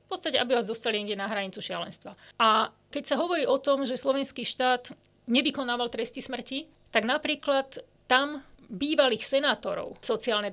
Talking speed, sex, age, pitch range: 150 wpm, female, 40-59, 225-270 Hz